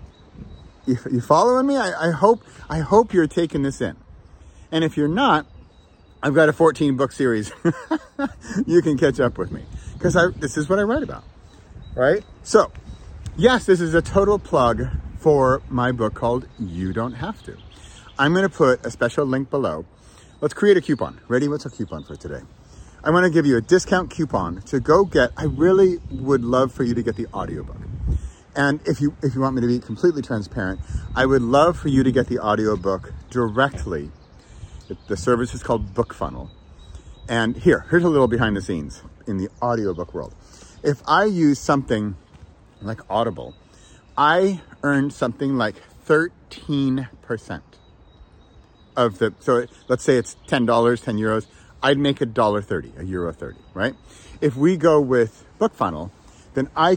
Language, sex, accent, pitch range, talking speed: English, male, American, 100-150 Hz, 170 wpm